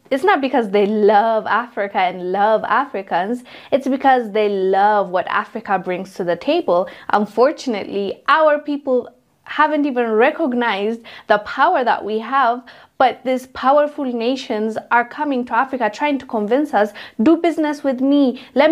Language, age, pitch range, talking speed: English, 20-39, 195-255 Hz, 150 wpm